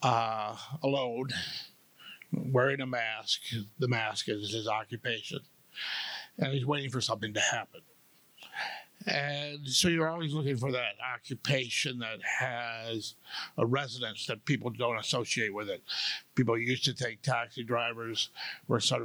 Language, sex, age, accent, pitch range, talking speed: English, male, 60-79, American, 115-140 Hz, 135 wpm